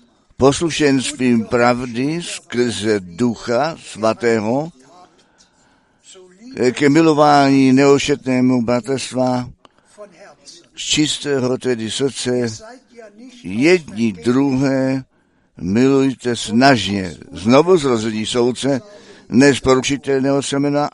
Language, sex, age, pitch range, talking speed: Czech, male, 60-79, 115-145 Hz, 70 wpm